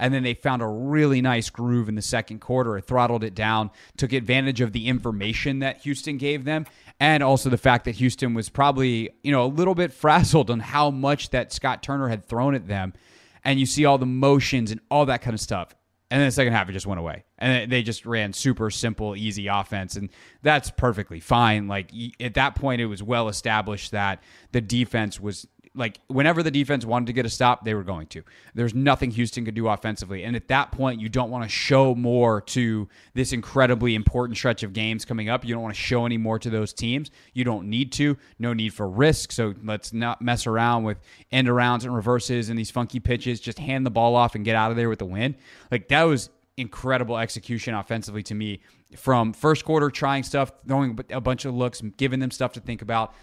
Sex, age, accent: male, 30-49, American